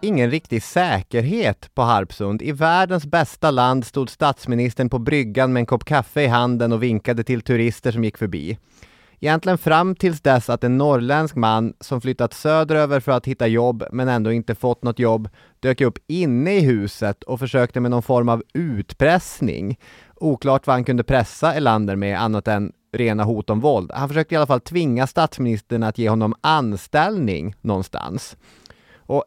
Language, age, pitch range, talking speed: English, 30-49, 110-135 Hz, 175 wpm